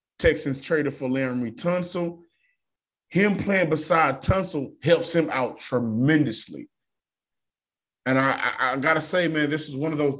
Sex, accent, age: male, American, 20-39